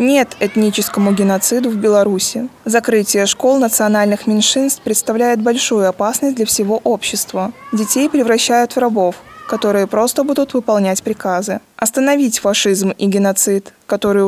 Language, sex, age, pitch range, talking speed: Russian, female, 20-39, 205-255 Hz, 120 wpm